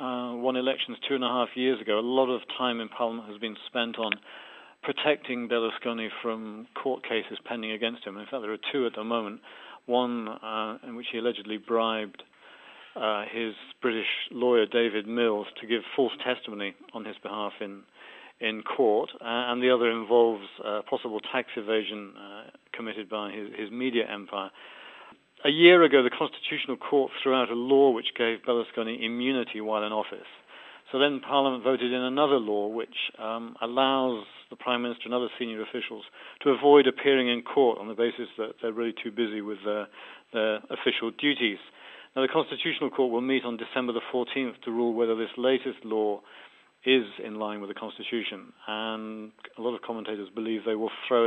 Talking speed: 185 wpm